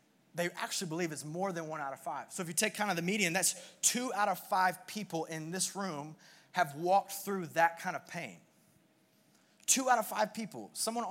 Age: 20-39